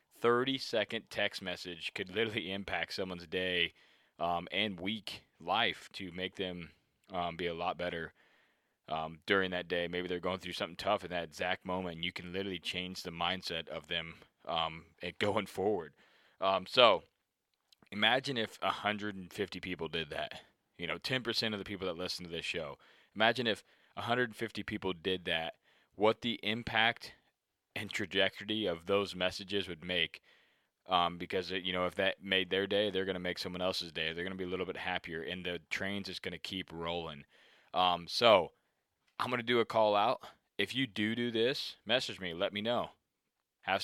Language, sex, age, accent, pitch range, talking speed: English, male, 20-39, American, 90-105 Hz, 180 wpm